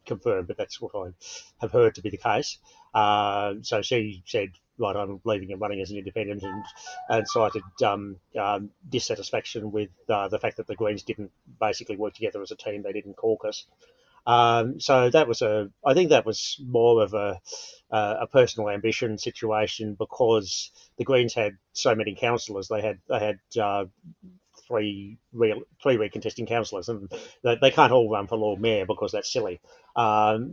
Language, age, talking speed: English, 30-49, 180 wpm